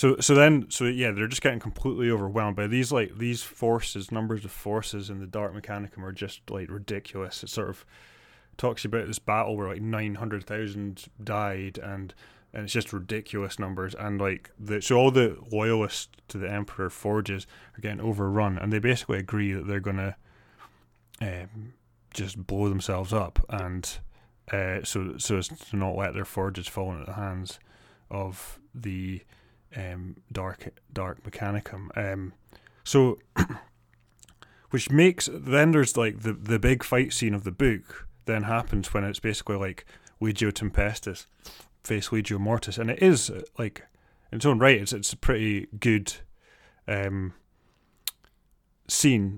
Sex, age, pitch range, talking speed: male, 20-39, 100-115 Hz, 160 wpm